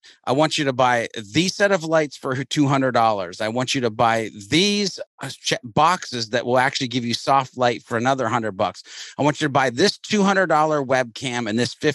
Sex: male